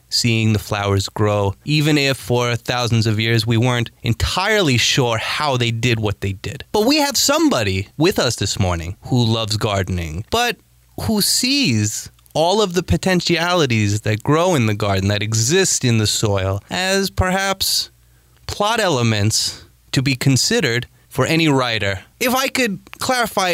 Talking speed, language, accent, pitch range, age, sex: 160 wpm, English, American, 110-175 Hz, 20-39, male